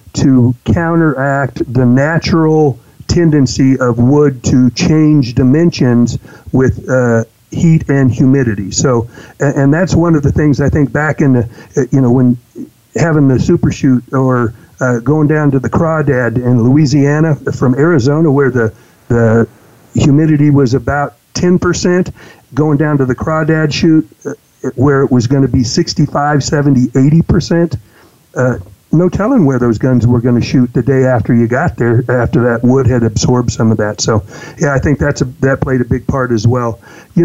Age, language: 60-79, English